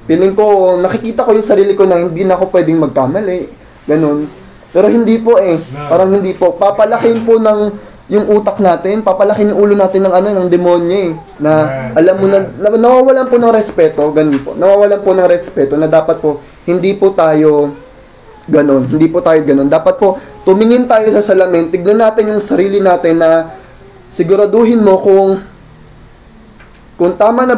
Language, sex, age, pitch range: Filipino, male, 20-39, 165-210 Hz